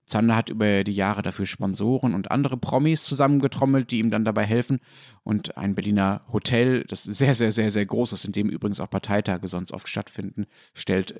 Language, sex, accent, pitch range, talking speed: German, male, German, 105-130 Hz, 195 wpm